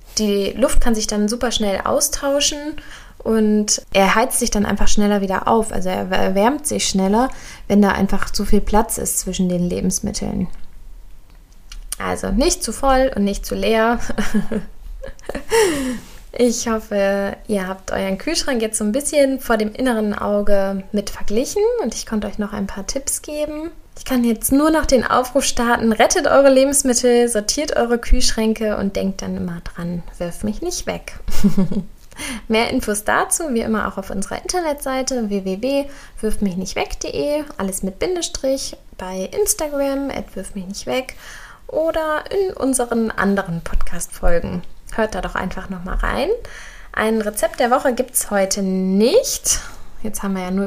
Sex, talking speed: female, 155 wpm